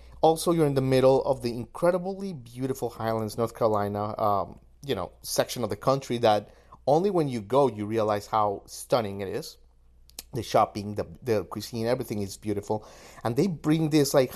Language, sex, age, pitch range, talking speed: English, male, 30-49, 110-135 Hz, 180 wpm